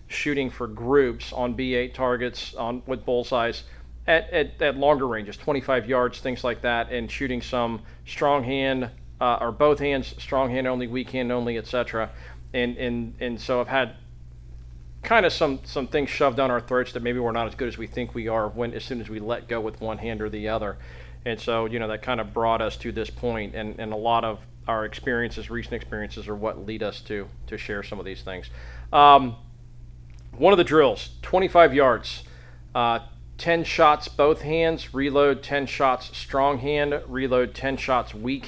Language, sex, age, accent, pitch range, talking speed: English, male, 40-59, American, 110-130 Hz, 200 wpm